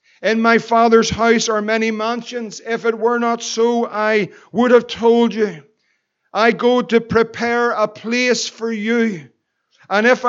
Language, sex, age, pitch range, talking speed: English, male, 50-69, 220-245 Hz, 155 wpm